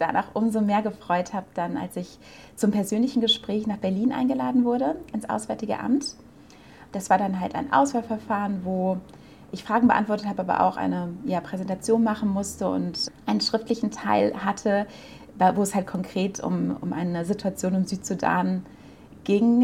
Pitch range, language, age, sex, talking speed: 175-220 Hz, German, 30-49, female, 155 wpm